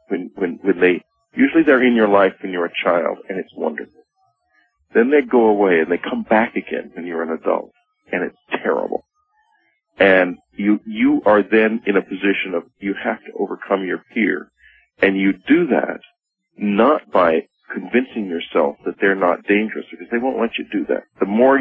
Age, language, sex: 40-59, English, male